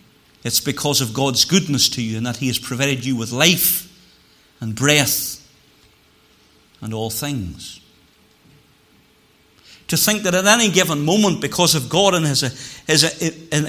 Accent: British